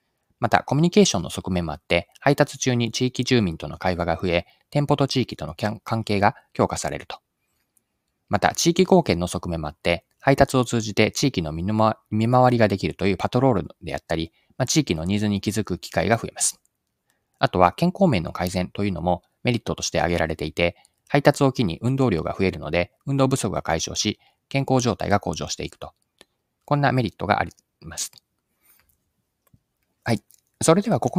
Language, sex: Japanese, male